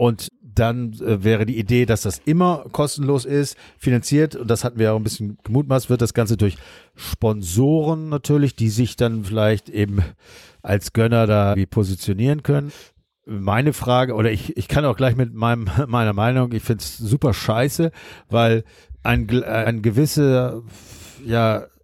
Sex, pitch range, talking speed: male, 110-135 Hz, 160 wpm